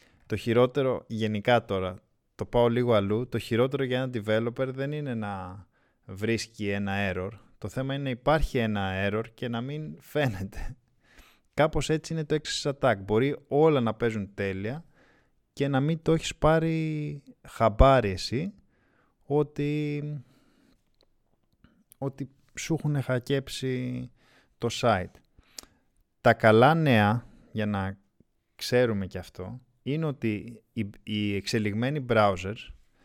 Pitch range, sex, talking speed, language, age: 100-130 Hz, male, 125 wpm, Greek, 20-39